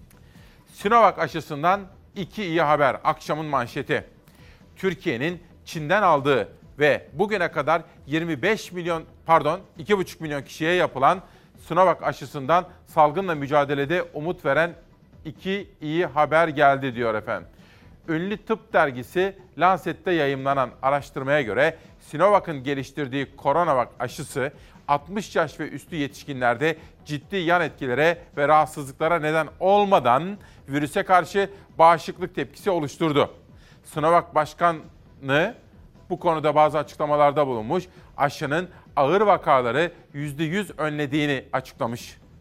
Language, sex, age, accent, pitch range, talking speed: Turkish, male, 40-59, native, 145-175 Hz, 105 wpm